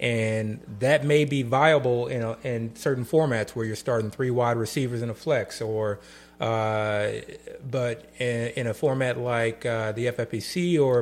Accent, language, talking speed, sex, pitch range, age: American, English, 170 wpm, male, 115-140 Hz, 30-49